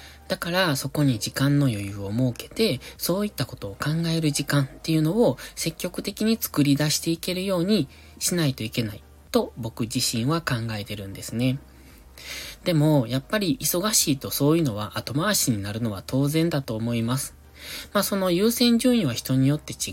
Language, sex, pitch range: Japanese, male, 110-150 Hz